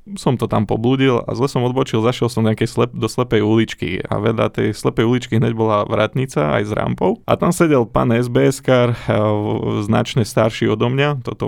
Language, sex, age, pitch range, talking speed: Slovak, male, 20-39, 110-125 Hz, 185 wpm